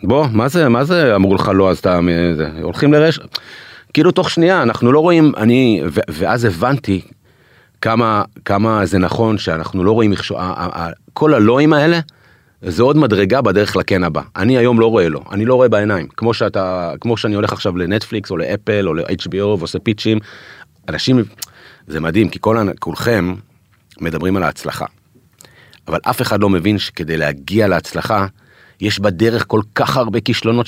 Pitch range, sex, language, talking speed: 95-130 Hz, male, Hebrew, 170 wpm